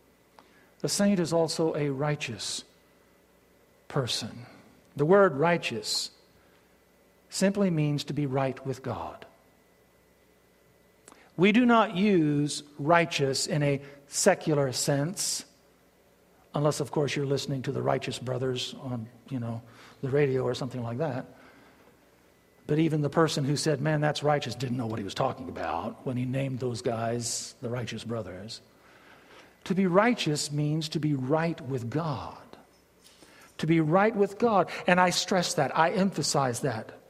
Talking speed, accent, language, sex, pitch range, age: 145 wpm, American, English, male, 130-160 Hz, 50-69